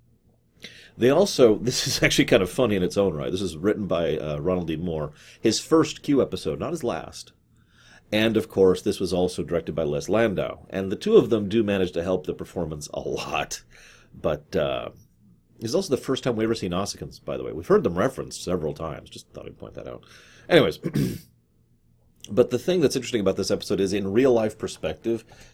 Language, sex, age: English, male, 40-59